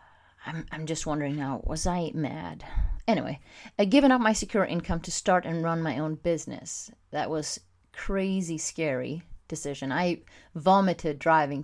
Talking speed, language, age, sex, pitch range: 155 wpm, English, 30-49, female, 155-190 Hz